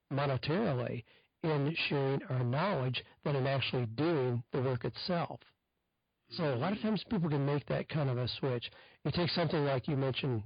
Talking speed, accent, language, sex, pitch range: 180 wpm, American, English, male, 130-155 Hz